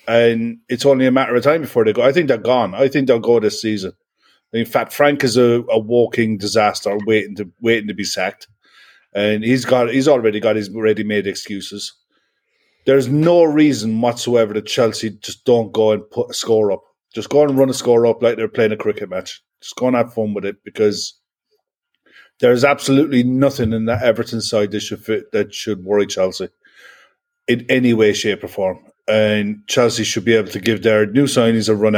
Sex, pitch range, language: male, 105-135 Hz, English